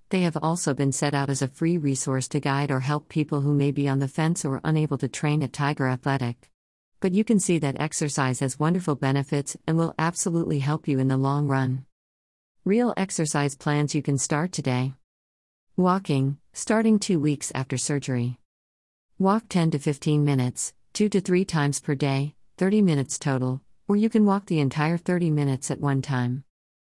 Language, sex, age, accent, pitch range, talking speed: English, female, 50-69, American, 130-160 Hz, 190 wpm